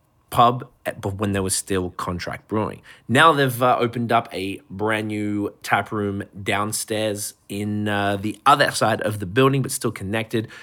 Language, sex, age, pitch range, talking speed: English, male, 20-39, 100-120 Hz, 170 wpm